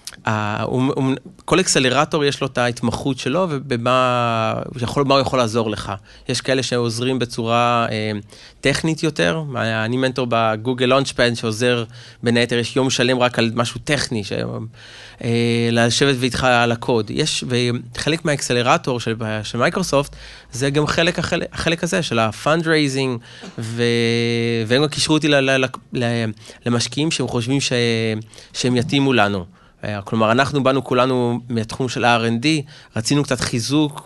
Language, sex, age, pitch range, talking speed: English, male, 20-39, 115-135 Hz, 135 wpm